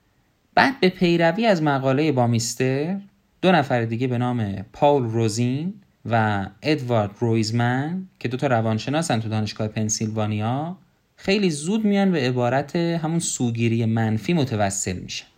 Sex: male